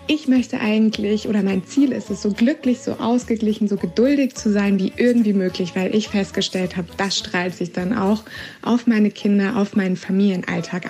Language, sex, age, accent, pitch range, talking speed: German, female, 20-39, German, 195-235 Hz, 185 wpm